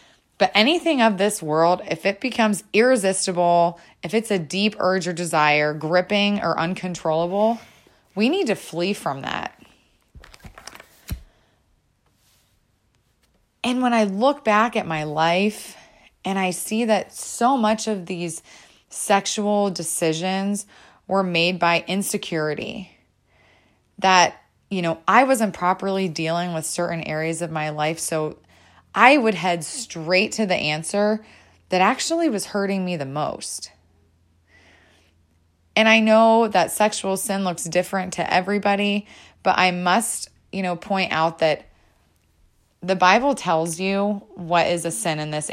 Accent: American